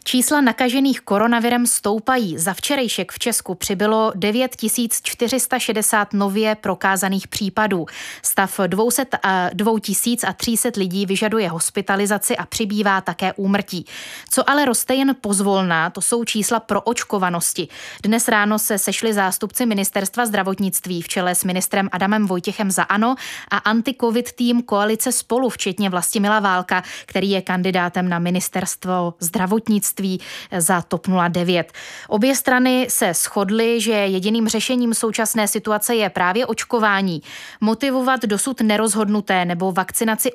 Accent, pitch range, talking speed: native, 190-230 Hz, 125 wpm